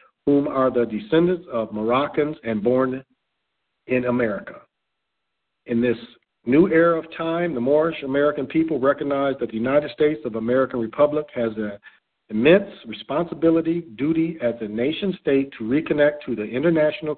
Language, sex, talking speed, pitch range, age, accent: English, male, 145 wpm, 120-160 Hz, 50-69, American